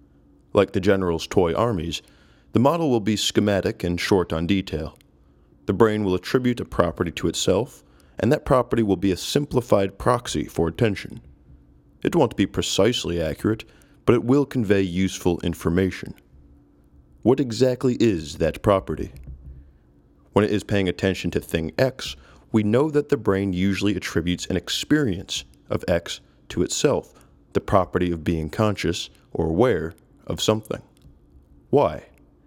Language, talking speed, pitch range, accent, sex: English, 145 wpm, 85-110 Hz, American, male